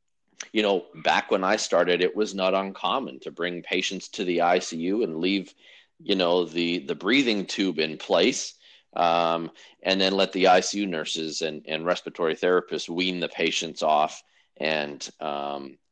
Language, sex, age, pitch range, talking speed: English, male, 30-49, 75-100 Hz, 160 wpm